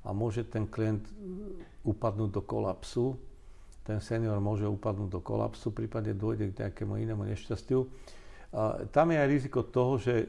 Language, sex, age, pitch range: Slovak, male, 50-69, 100-120 Hz